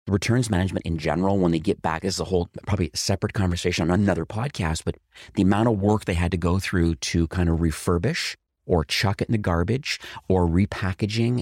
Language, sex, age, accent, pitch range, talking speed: English, male, 30-49, American, 85-100 Hz, 210 wpm